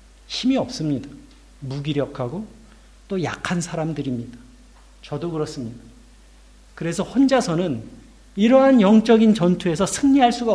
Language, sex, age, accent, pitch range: Korean, male, 50-69, native, 150-235 Hz